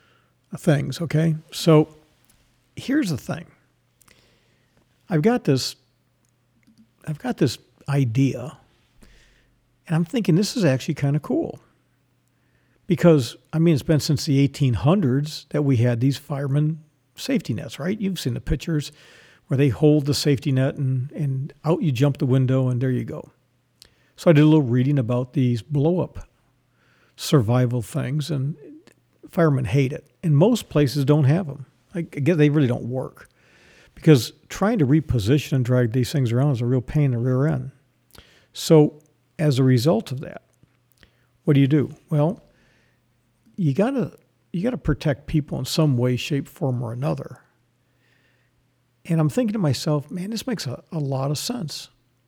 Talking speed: 165 wpm